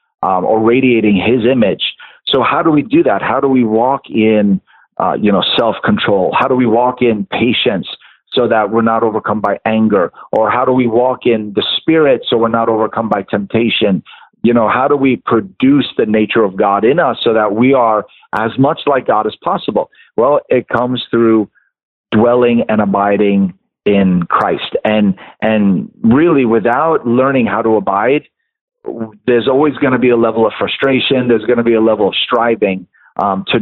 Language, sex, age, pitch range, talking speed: English, male, 40-59, 110-135 Hz, 185 wpm